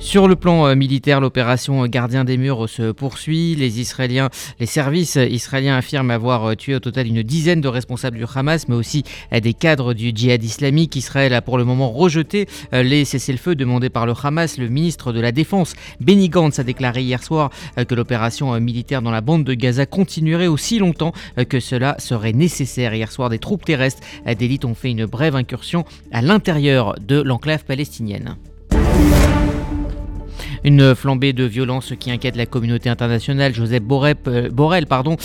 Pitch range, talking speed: 120-150 Hz, 180 wpm